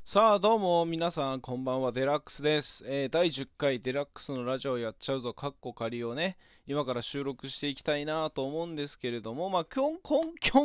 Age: 20-39